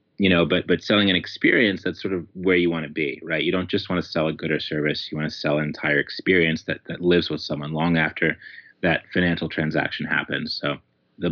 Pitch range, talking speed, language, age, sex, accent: 80-100 Hz, 245 wpm, English, 30-49, male, American